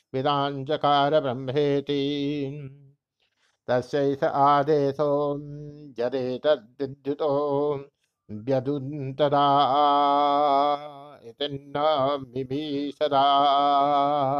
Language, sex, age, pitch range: Hindi, male, 60-79, 135-145 Hz